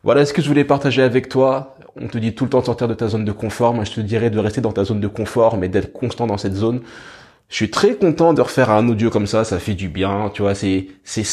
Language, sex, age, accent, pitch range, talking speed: French, male, 20-39, French, 100-120 Hz, 295 wpm